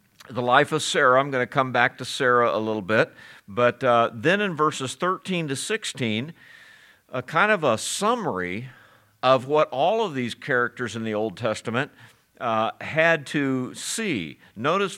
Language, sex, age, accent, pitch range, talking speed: English, male, 50-69, American, 115-160 Hz, 170 wpm